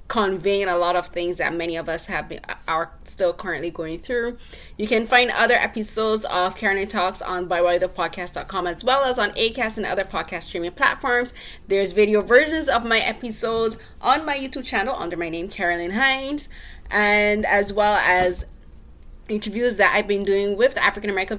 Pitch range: 175-230 Hz